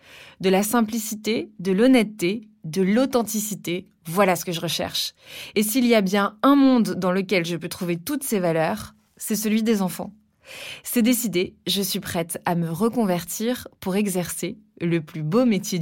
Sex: female